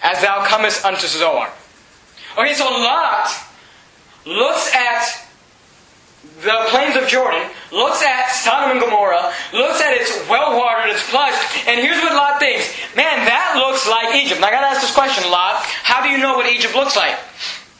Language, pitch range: English, 225-280 Hz